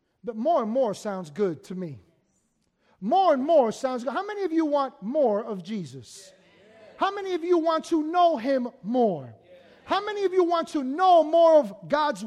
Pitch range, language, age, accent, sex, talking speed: 245-340 Hz, English, 30-49, American, male, 195 wpm